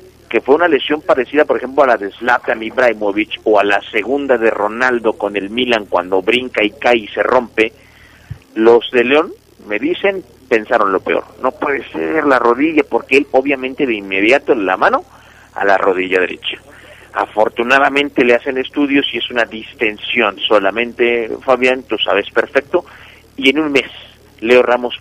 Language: Italian